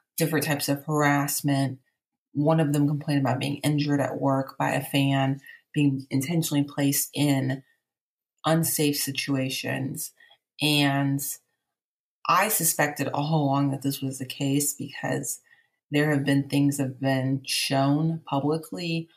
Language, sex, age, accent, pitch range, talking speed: English, female, 30-49, American, 140-150 Hz, 130 wpm